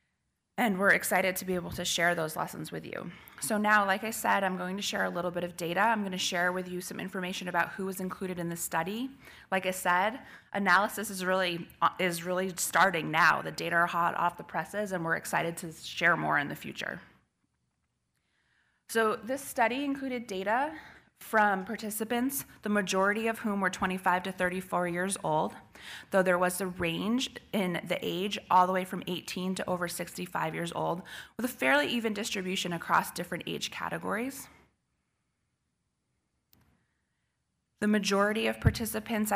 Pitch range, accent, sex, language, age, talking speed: 175-205 Hz, American, female, English, 20-39, 175 wpm